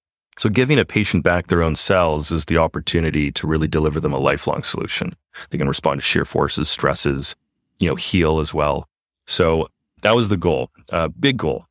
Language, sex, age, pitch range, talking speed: English, male, 30-49, 80-95 Hz, 195 wpm